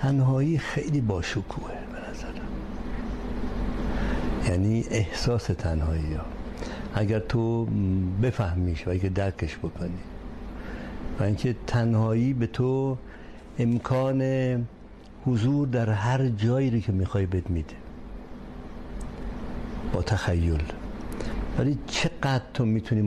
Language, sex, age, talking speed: Persian, male, 60-79, 90 wpm